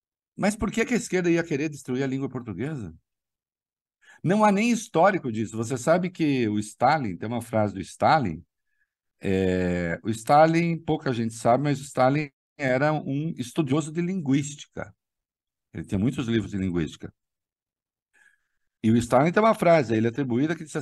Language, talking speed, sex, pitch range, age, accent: Portuguese, 160 wpm, male, 115-155 Hz, 50-69, Brazilian